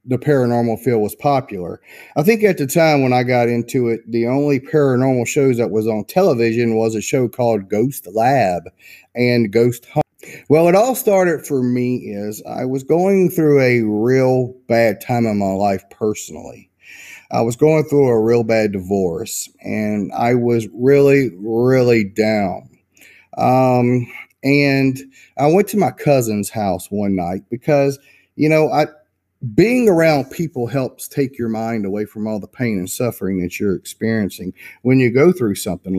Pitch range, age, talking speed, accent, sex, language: 110-145 Hz, 30-49, 165 wpm, American, male, English